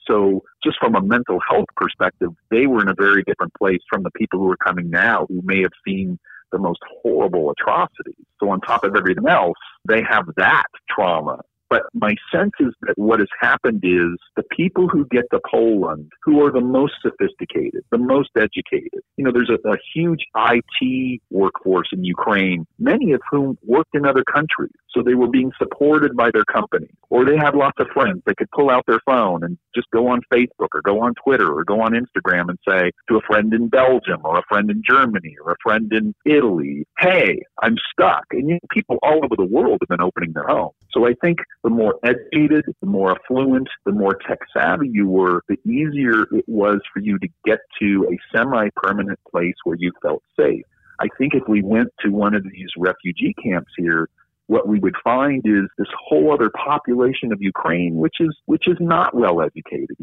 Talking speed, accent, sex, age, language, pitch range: 205 wpm, American, male, 50-69, English, 95-145 Hz